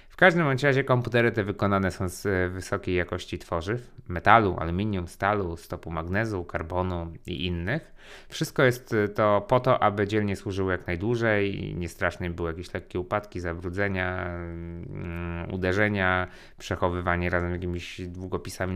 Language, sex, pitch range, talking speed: Polish, male, 90-115 Hz, 130 wpm